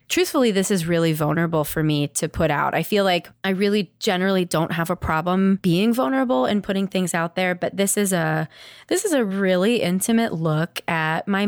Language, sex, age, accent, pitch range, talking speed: English, female, 20-39, American, 155-190 Hz, 205 wpm